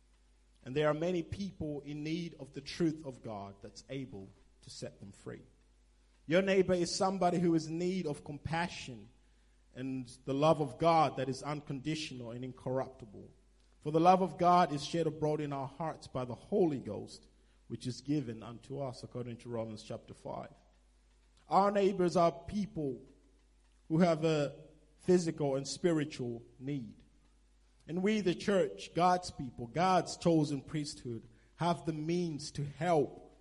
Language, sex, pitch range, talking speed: English, male, 120-170 Hz, 160 wpm